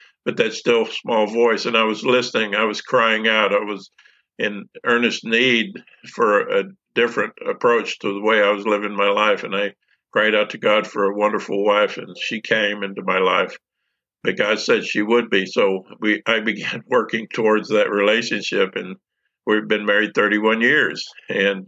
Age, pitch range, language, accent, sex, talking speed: 50-69, 100-115 Hz, English, American, male, 190 wpm